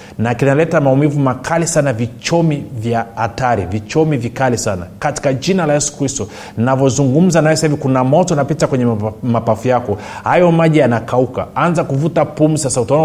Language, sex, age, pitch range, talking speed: Swahili, male, 30-49, 120-155 Hz, 145 wpm